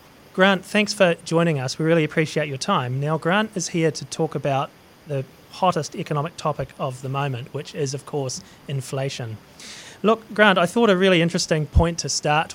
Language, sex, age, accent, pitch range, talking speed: English, male, 30-49, Australian, 140-170 Hz, 185 wpm